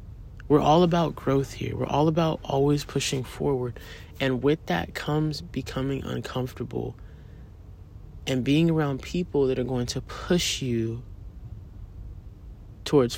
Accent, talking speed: American, 125 wpm